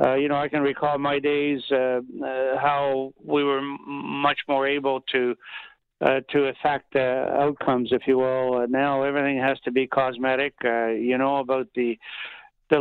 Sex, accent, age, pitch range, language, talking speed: male, American, 60-79, 130-150 Hz, English, 180 wpm